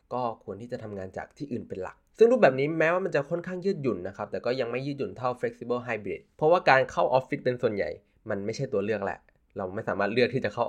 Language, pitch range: Thai, 105-135 Hz